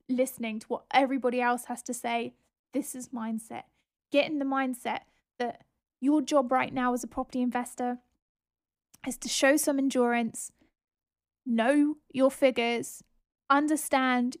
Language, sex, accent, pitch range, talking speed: English, female, British, 245-285 Hz, 135 wpm